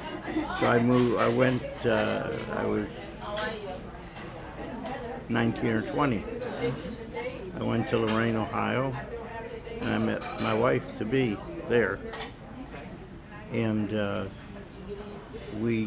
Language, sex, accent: English, male, American